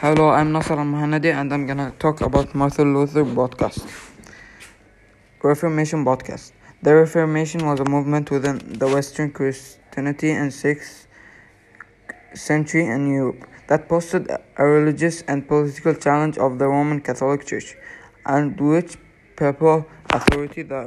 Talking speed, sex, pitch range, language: 135 wpm, male, 135-150 Hz, English